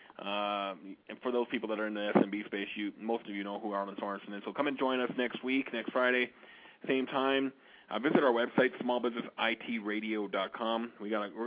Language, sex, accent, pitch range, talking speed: English, male, American, 105-125 Hz, 205 wpm